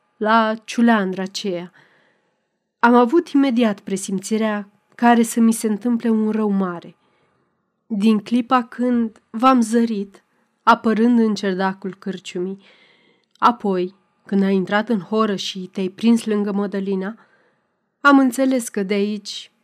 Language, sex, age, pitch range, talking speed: Romanian, female, 30-49, 195-235 Hz, 120 wpm